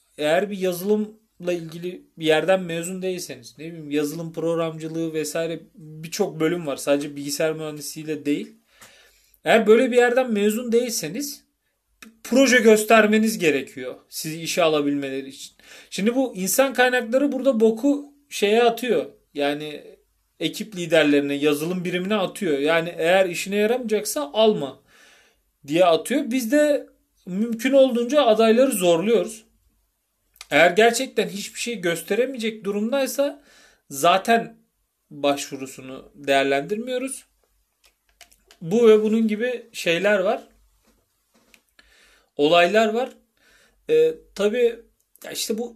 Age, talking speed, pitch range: 40-59, 105 wpm, 160-235 Hz